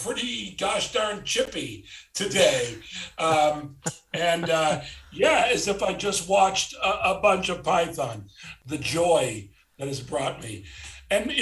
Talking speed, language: 140 wpm, English